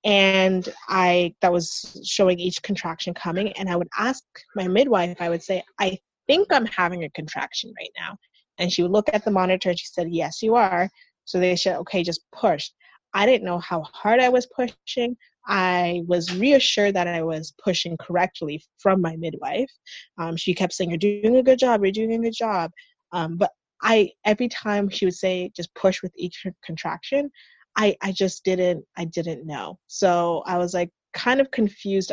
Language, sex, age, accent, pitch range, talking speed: English, female, 20-39, American, 170-205 Hz, 195 wpm